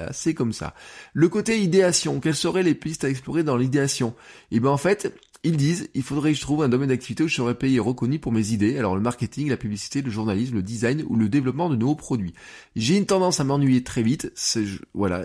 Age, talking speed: 20-39, 250 wpm